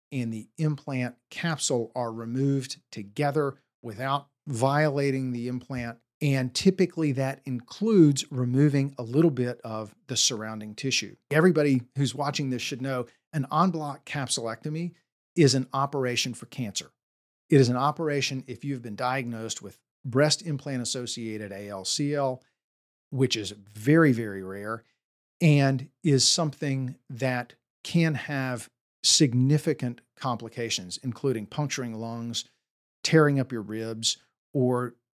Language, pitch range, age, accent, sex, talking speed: English, 115-145 Hz, 40-59, American, male, 120 wpm